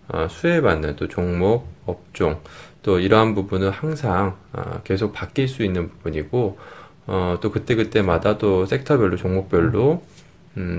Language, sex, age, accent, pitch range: Korean, male, 20-39, native, 90-115 Hz